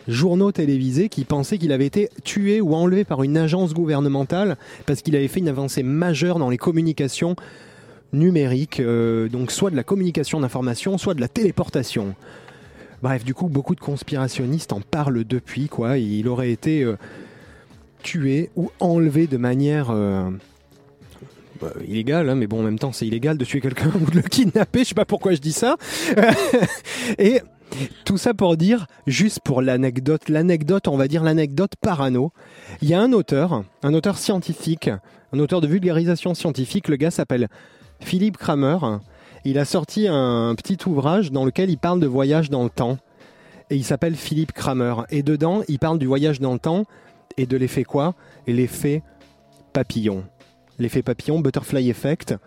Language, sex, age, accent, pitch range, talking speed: French, male, 20-39, French, 125-175 Hz, 175 wpm